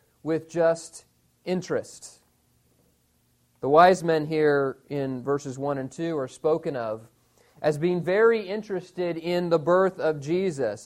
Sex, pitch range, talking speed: male, 125-165 Hz, 135 wpm